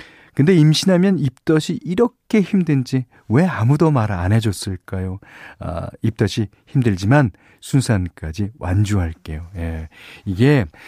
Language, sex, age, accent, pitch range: Korean, male, 40-59, native, 100-155 Hz